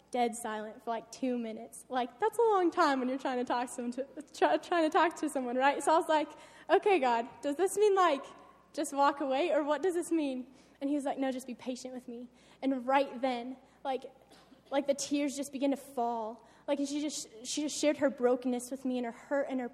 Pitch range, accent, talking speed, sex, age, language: 245-285 Hz, American, 245 wpm, female, 10-29, English